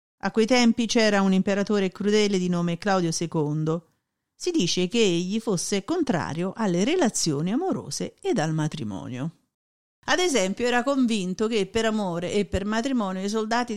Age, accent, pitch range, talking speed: 50-69, native, 185-235 Hz, 155 wpm